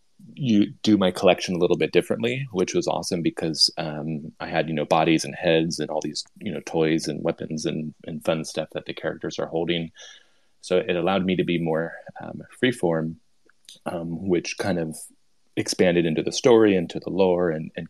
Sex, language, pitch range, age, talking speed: male, English, 80-85 Hz, 30-49, 200 wpm